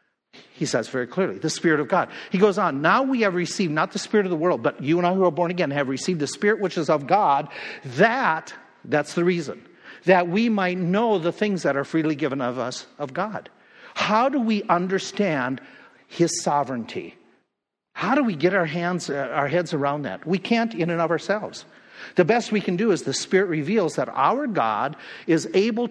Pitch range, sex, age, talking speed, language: 150-195 Hz, male, 50-69, 215 wpm, English